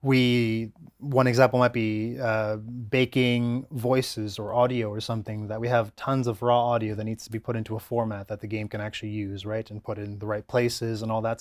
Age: 20-39